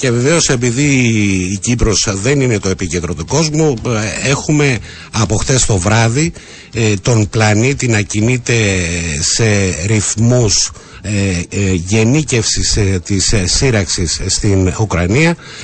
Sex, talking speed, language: male, 95 wpm, Greek